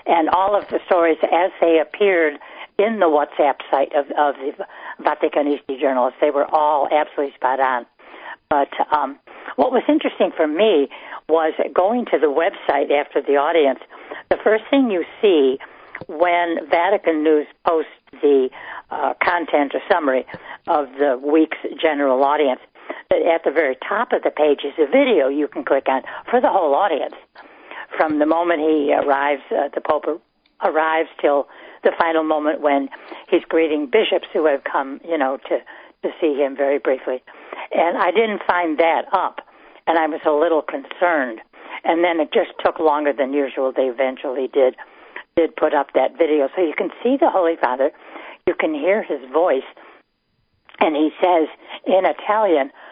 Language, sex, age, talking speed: English, female, 60-79, 170 wpm